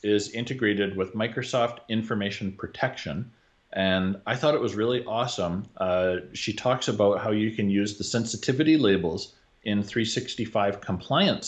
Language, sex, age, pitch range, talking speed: English, male, 40-59, 90-105 Hz, 140 wpm